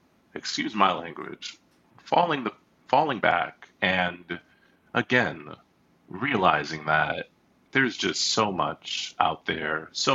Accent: American